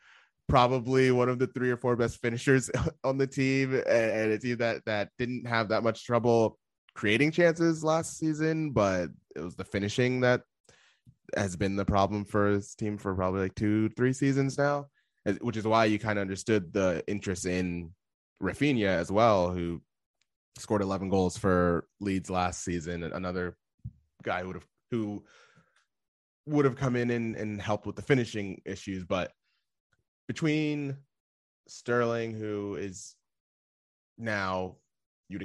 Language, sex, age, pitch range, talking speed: English, male, 20-39, 95-125 Hz, 155 wpm